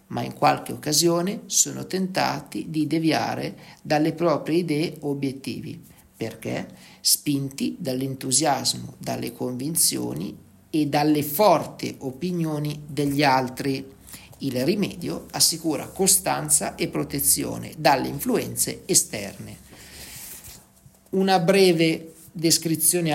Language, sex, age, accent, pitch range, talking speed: Italian, male, 50-69, native, 140-170 Hz, 90 wpm